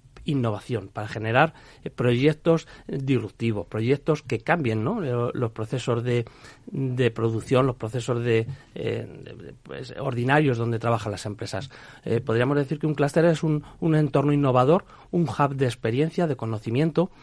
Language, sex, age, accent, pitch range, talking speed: Spanish, male, 40-59, Spanish, 120-150 Hz, 155 wpm